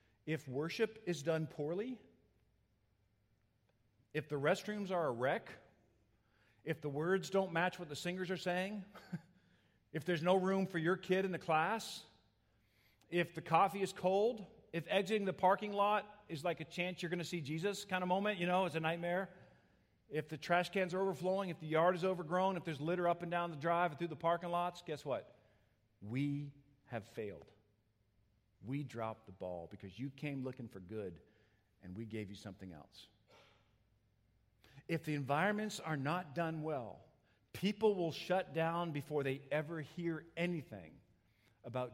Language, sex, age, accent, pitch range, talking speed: English, male, 50-69, American, 110-175 Hz, 170 wpm